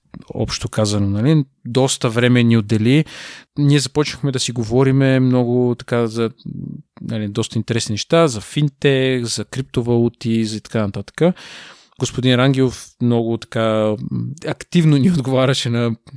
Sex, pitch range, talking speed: male, 115-140 Hz, 130 wpm